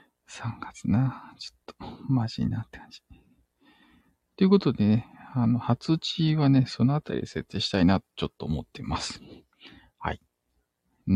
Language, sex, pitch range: Japanese, male, 100-140 Hz